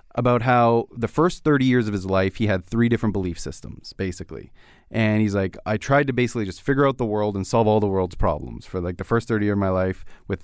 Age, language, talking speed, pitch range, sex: 30-49, English, 245 wpm, 95-120 Hz, male